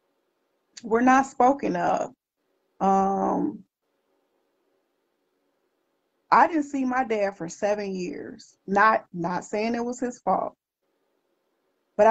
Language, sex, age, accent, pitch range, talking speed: English, female, 20-39, American, 185-220 Hz, 105 wpm